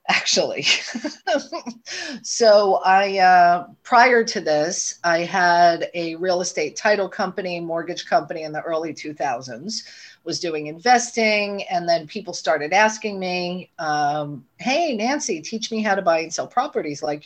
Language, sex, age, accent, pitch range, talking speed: English, female, 40-59, American, 160-225 Hz, 145 wpm